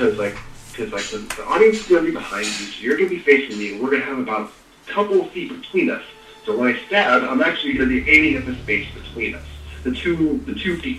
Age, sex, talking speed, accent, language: 30-49, male, 280 wpm, American, English